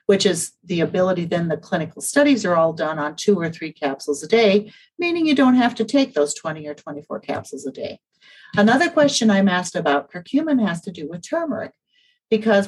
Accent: American